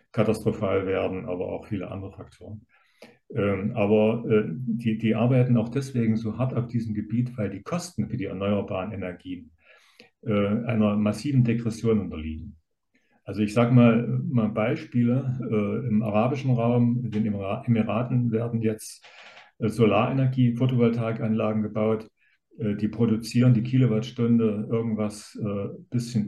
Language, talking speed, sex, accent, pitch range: German, 130 wpm, male, German, 105-120 Hz